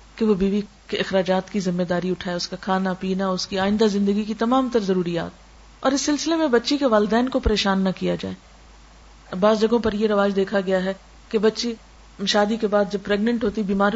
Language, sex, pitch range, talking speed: Urdu, female, 185-235 Hz, 220 wpm